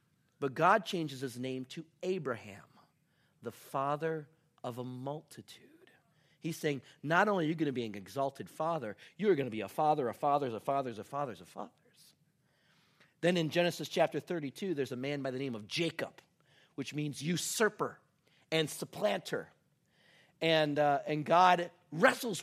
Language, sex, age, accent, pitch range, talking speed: English, male, 40-59, American, 145-180 Hz, 165 wpm